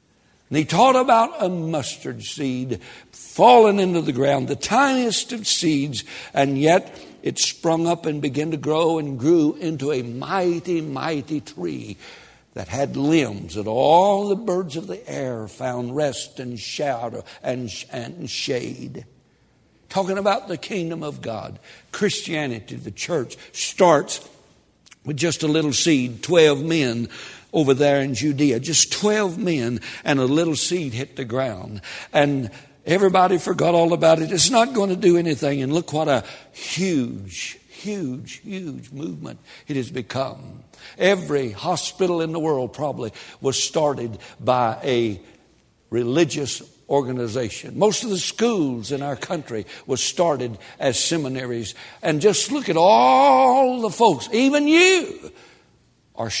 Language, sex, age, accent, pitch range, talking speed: English, male, 60-79, American, 130-180 Hz, 145 wpm